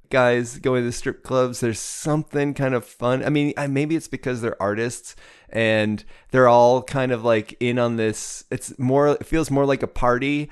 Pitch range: 105-135 Hz